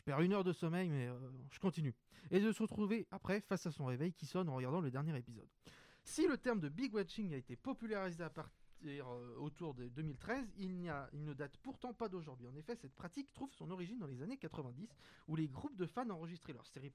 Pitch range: 140-210 Hz